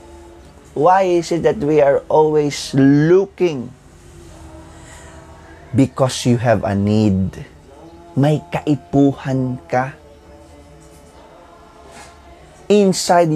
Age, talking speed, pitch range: 20-39, 75 wpm, 100-155 Hz